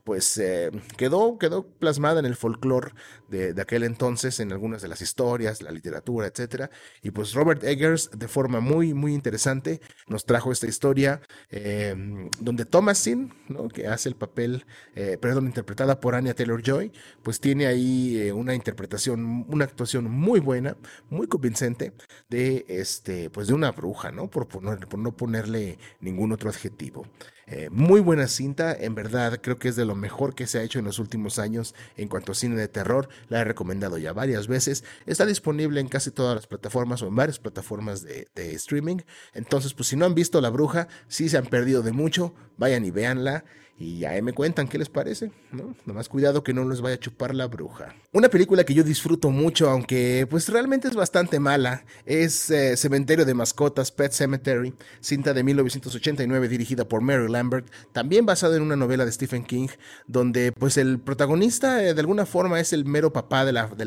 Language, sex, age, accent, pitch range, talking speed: English, male, 30-49, Mexican, 115-145 Hz, 195 wpm